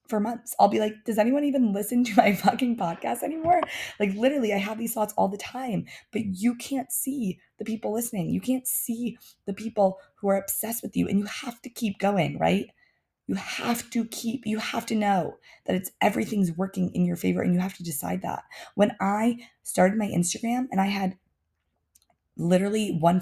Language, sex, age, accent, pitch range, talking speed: English, female, 20-39, American, 185-230 Hz, 200 wpm